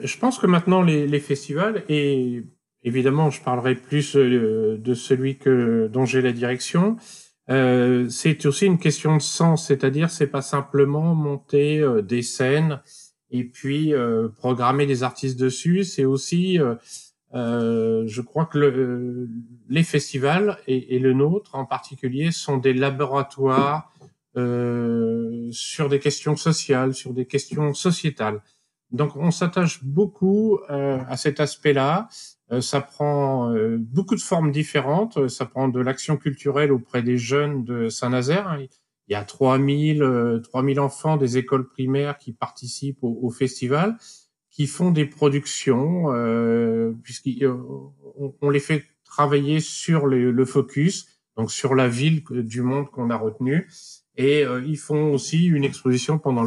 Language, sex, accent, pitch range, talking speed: French, male, French, 125-150 Hz, 145 wpm